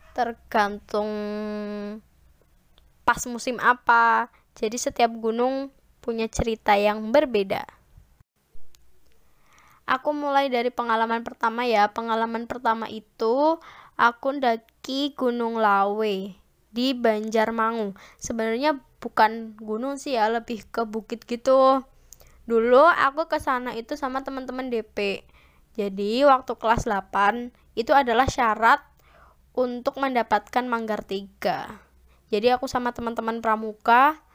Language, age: Indonesian, 10-29